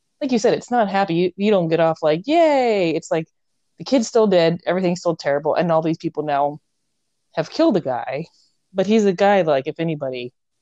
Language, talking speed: English, 215 wpm